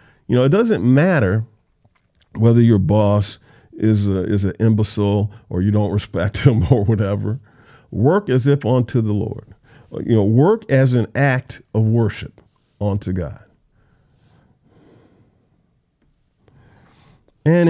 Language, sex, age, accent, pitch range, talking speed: English, male, 50-69, American, 100-130 Hz, 125 wpm